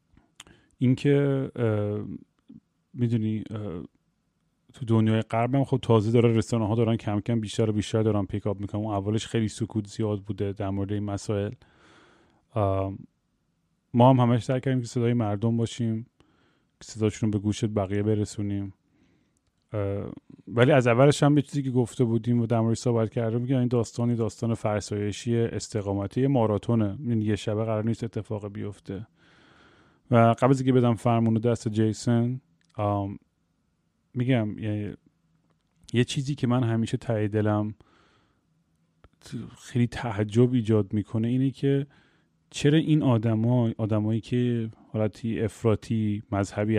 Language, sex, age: Persian, male, 30-49